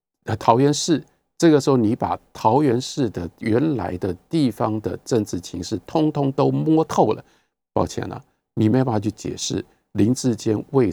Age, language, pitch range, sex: 50-69, Chinese, 80-115 Hz, male